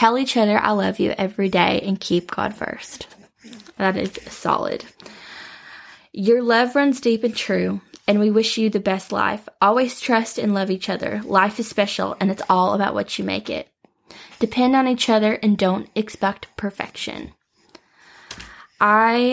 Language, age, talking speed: English, 10-29, 170 wpm